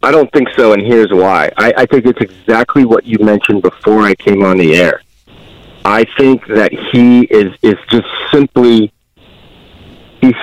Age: 40-59